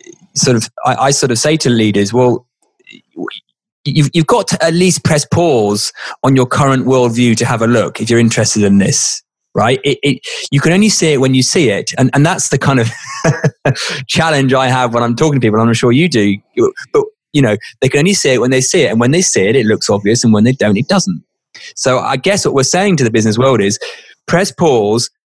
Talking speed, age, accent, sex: 235 wpm, 20-39, British, male